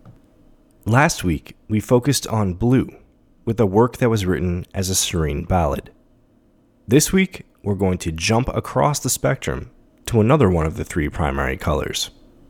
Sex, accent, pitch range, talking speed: male, American, 90-120 Hz, 160 wpm